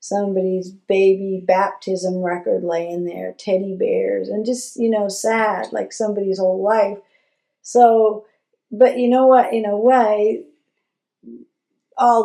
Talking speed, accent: 125 wpm, American